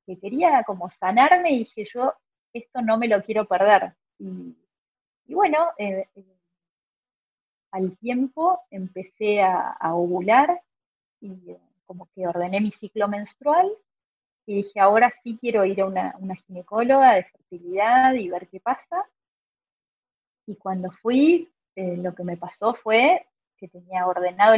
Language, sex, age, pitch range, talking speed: Spanish, female, 20-39, 185-245 Hz, 145 wpm